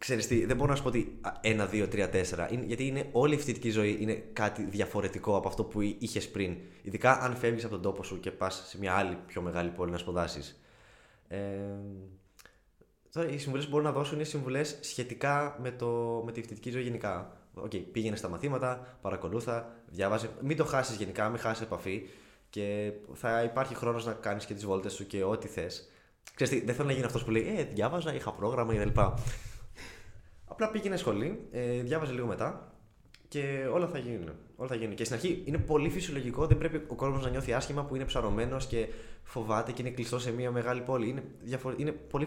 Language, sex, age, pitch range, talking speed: Greek, male, 20-39, 100-130 Hz, 195 wpm